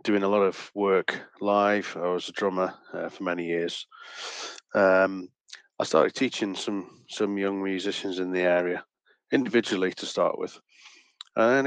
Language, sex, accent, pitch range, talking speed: English, male, British, 90-100 Hz, 155 wpm